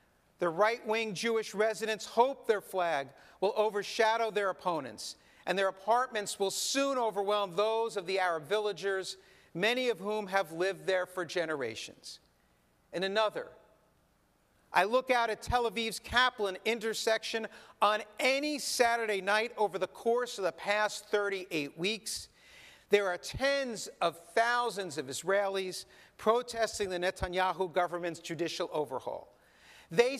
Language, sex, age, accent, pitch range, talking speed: English, male, 50-69, American, 190-235 Hz, 130 wpm